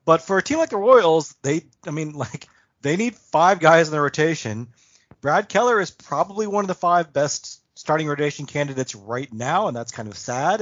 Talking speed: 210 wpm